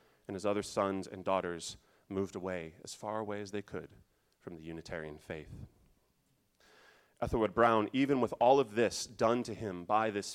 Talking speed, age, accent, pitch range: 175 wpm, 30-49, American, 95-125 Hz